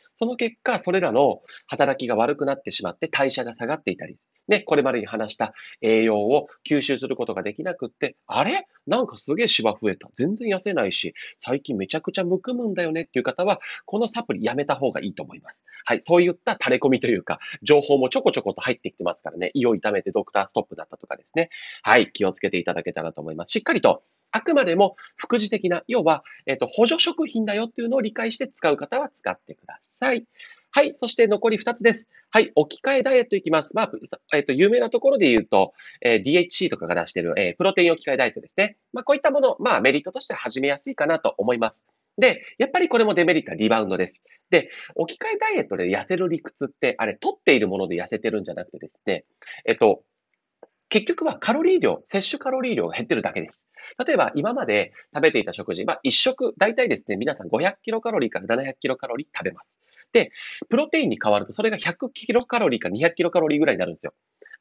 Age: 30-49